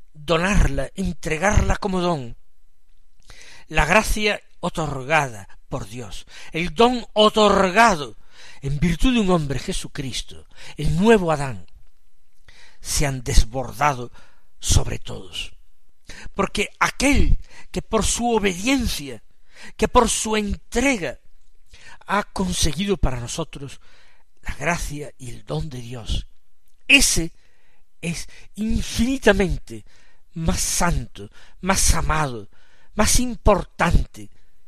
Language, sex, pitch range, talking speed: Spanish, male, 115-195 Hz, 95 wpm